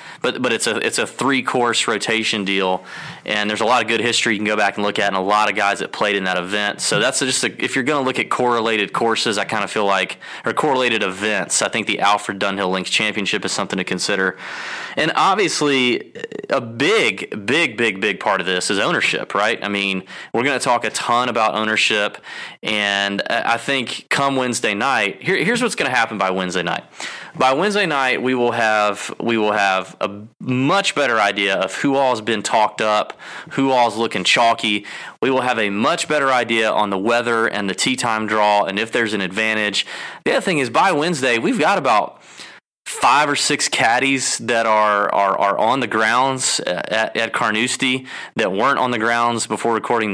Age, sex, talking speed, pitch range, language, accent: 20-39, male, 210 wpm, 100-125 Hz, English, American